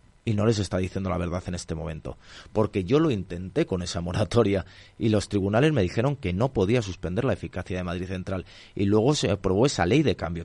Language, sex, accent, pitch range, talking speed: Spanish, male, Spanish, 95-130 Hz, 225 wpm